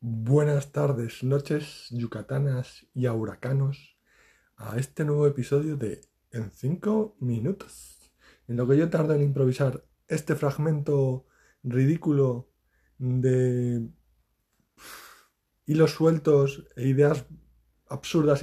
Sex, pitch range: male, 115-140 Hz